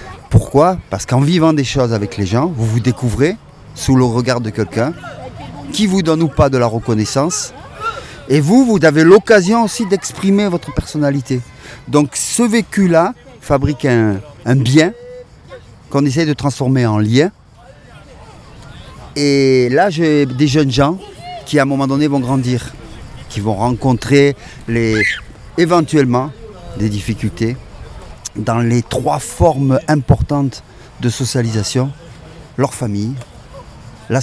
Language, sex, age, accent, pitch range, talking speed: French, male, 40-59, French, 115-150 Hz, 135 wpm